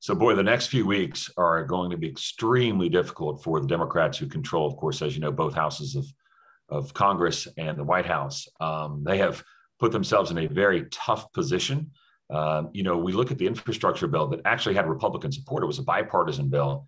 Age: 40-59